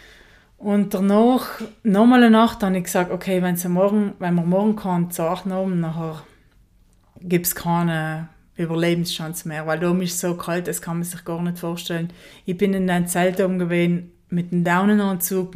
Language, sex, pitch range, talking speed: German, female, 170-200 Hz, 175 wpm